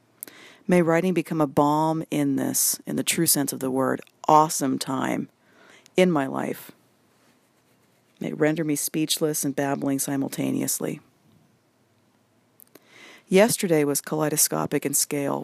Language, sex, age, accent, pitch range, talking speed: English, female, 40-59, American, 140-165 Hz, 125 wpm